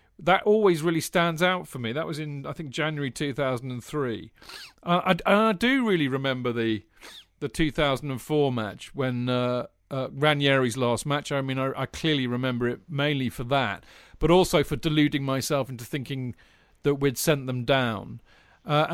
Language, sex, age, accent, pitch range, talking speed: English, male, 40-59, British, 125-150 Hz, 170 wpm